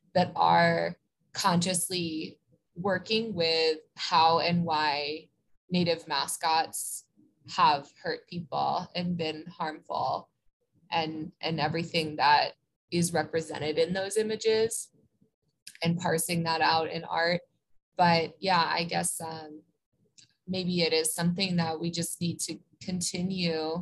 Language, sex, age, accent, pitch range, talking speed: English, female, 20-39, American, 165-190 Hz, 115 wpm